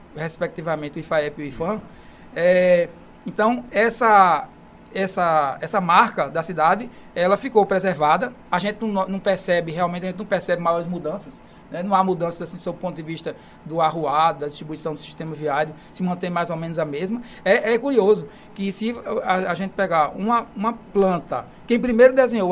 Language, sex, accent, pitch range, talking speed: Portuguese, male, Brazilian, 165-200 Hz, 180 wpm